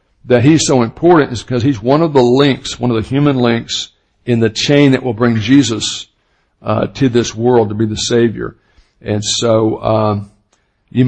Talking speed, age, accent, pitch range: 190 wpm, 60-79, American, 115-140 Hz